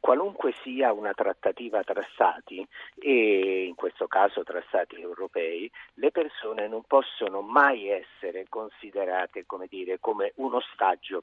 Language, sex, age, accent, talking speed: Italian, male, 50-69, native, 130 wpm